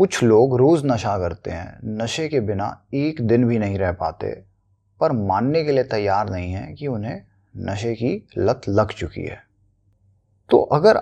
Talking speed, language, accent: 175 wpm, Hindi, native